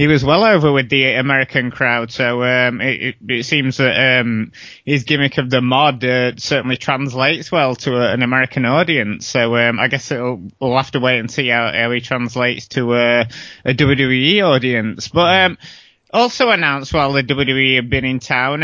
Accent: British